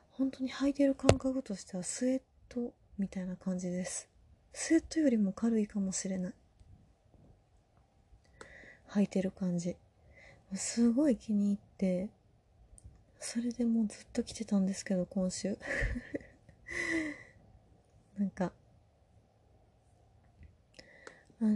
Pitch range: 180-215 Hz